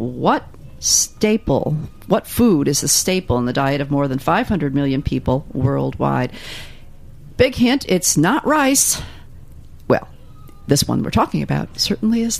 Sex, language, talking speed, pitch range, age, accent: female, English, 145 wpm, 140-200 Hz, 50-69, American